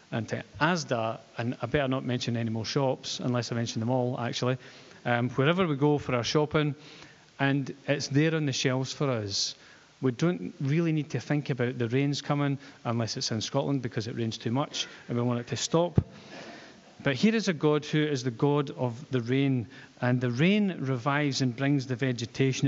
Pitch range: 120-150 Hz